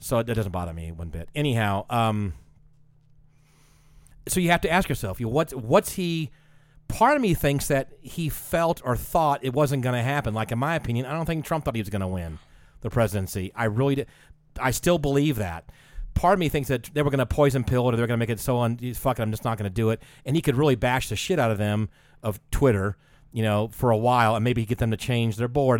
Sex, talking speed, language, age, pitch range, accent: male, 255 wpm, English, 40-59, 110-145 Hz, American